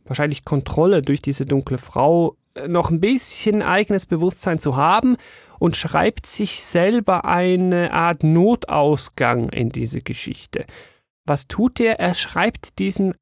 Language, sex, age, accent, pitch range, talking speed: German, male, 30-49, German, 145-185 Hz, 130 wpm